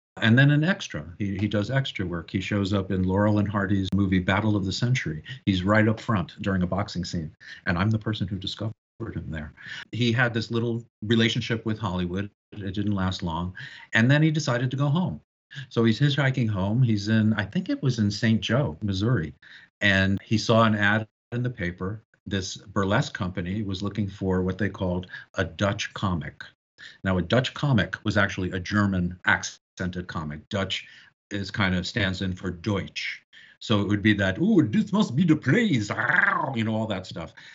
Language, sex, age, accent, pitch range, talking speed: English, male, 50-69, American, 95-120 Hz, 195 wpm